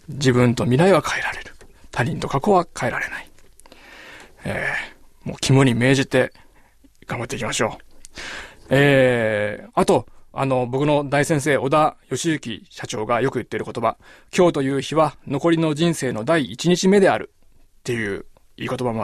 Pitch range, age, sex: 120-155 Hz, 20-39, male